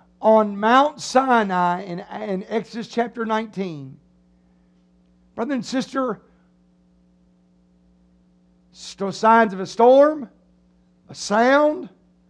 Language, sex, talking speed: English, male, 85 wpm